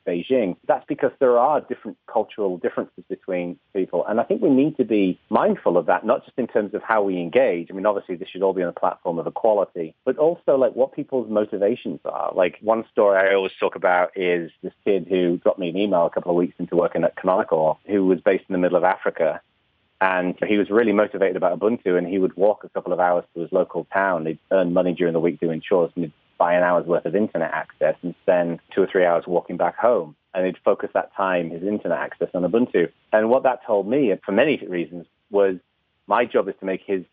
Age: 30-49